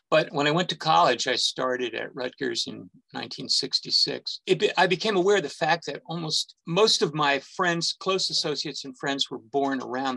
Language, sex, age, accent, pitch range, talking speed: English, male, 50-69, American, 125-170 Hz, 185 wpm